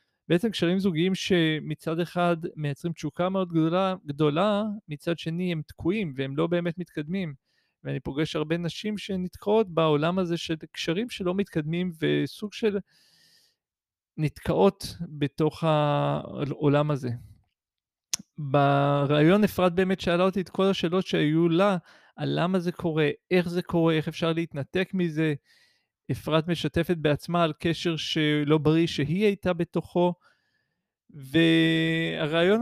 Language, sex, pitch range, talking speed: Hebrew, male, 155-195 Hz, 125 wpm